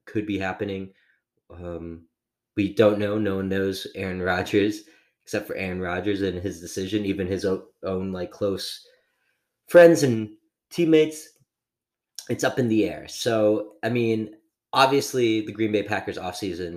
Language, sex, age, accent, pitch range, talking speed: English, male, 20-39, American, 90-115 Hz, 150 wpm